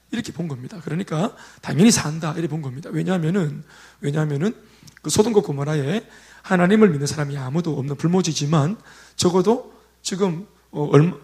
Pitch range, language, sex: 150-200 Hz, Korean, male